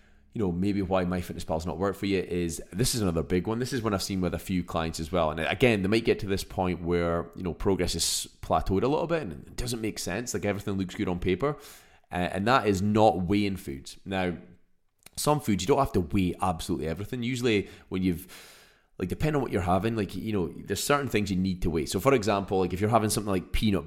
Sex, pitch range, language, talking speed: male, 90-115 Hz, English, 255 wpm